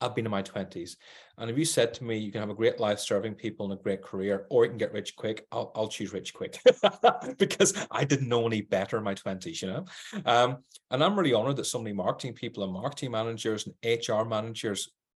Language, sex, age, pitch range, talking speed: English, male, 30-49, 100-130 Hz, 235 wpm